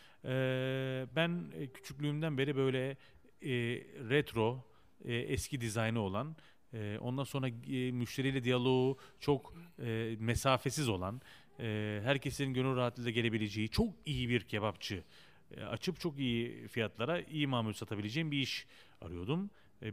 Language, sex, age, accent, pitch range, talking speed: Turkish, male, 40-59, native, 110-140 Hz, 130 wpm